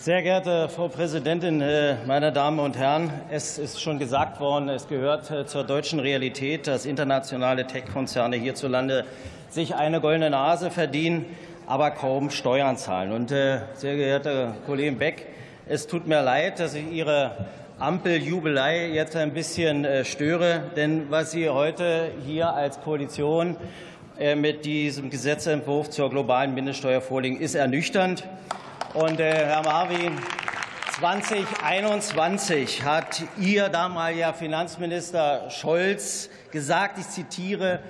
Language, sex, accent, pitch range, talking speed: German, male, German, 145-180 Hz, 125 wpm